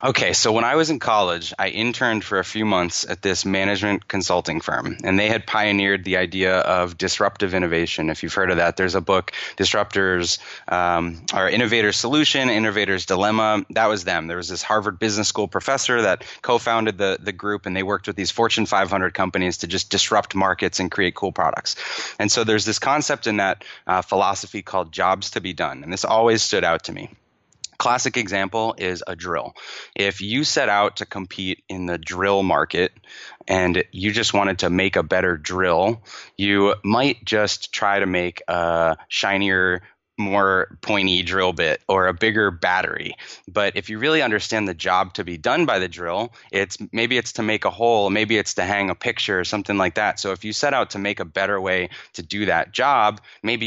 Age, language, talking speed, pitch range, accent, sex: 20-39, English, 200 wpm, 95-110 Hz, American, male